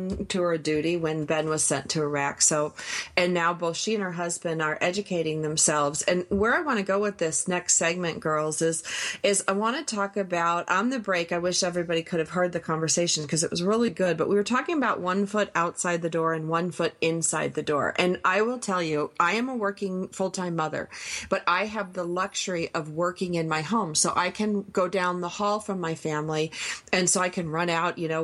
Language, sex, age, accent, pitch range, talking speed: English, female, 40-59, American, 165-200 Hz, 230 wpm